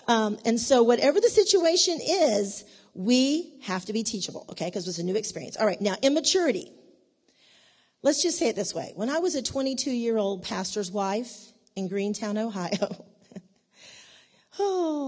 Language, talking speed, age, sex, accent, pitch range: English, 155 wpm, 40-59, female, American, 200-265 Hz